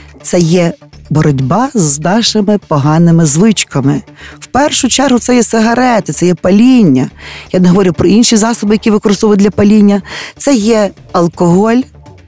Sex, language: female, Ukrainian